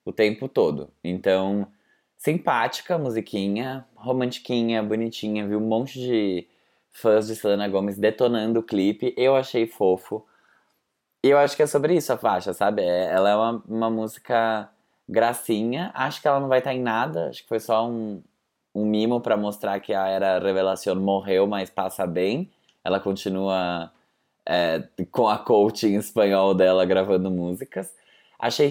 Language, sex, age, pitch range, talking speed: Portuguese, male, 20-39, 100-125 Hz, 155 wpm